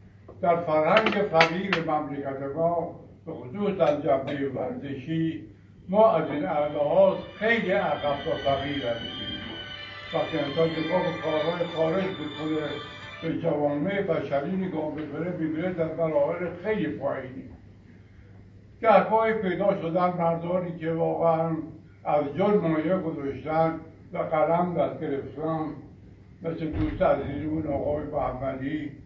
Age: 70-89